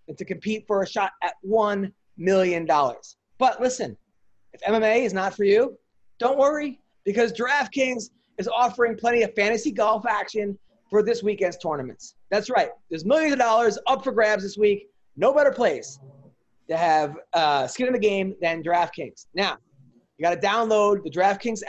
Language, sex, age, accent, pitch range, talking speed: English, male, 30-49, American, 170-215 Hz, 170 wpm